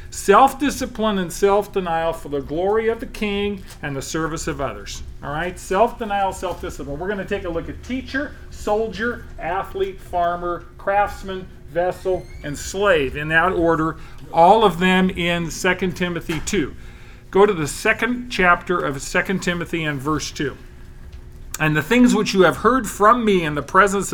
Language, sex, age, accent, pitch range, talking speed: English, male, 40-59, American, 150-200 Hz, 165 wpm